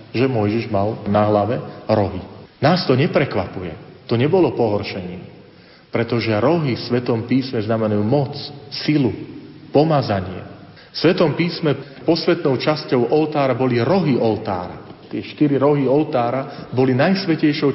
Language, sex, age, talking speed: Slovak, male, 40-59, 120 wpm